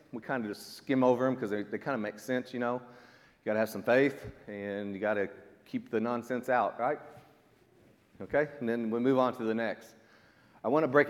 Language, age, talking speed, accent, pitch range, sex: English, 40-59, 240 wpm, American, 100-130 Hz, male